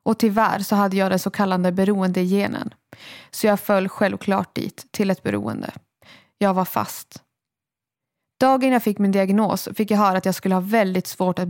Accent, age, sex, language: Swedish, 20-39, female, English